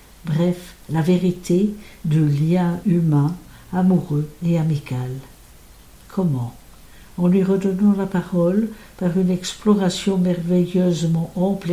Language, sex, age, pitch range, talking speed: English, female, 60-79, 160-190 Hz, 100 wpm